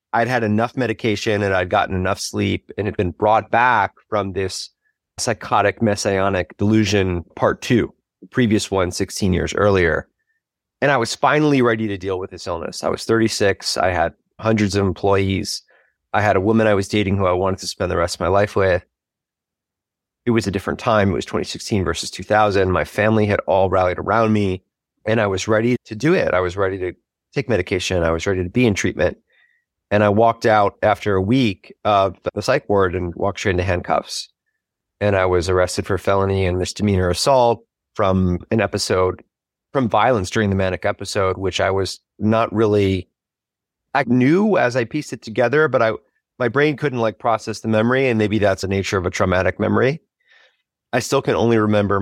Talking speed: 195 wpm